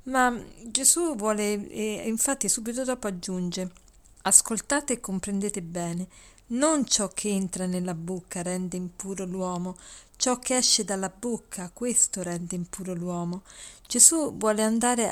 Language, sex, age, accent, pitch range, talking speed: Italian, female, 40-59, native, 190-225 Hz, 130 wpm